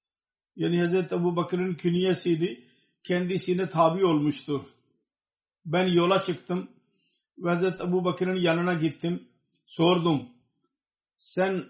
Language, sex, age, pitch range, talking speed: Turkish, male, 50-69, 165-180 Hz, 95 wpm